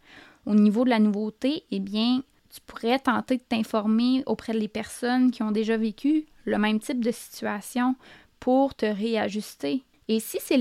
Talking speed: 170 wpm